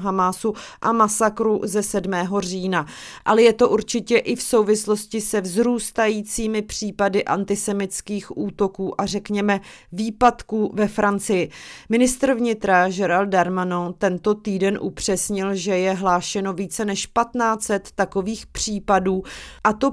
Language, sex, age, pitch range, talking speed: Czech, female, 30-49, 195-220 Hz, 120 wpm